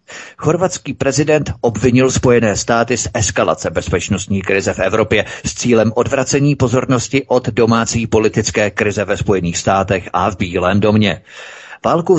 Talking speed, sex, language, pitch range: 135 wpm, male, Czech, 105-125 Hz